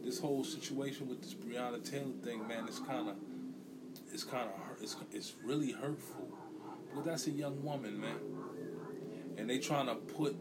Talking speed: 175 wpm